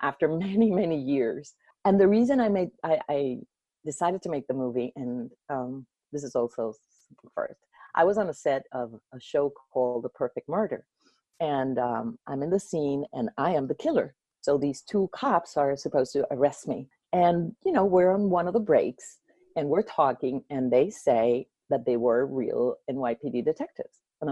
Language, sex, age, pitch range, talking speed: English, female, 40-59, 135-195 Hz, 190 wpm